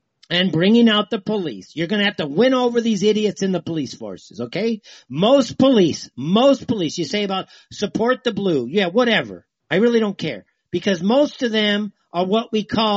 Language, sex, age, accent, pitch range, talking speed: English, male, 50-69, American, 155-205 Hz, 200 wpm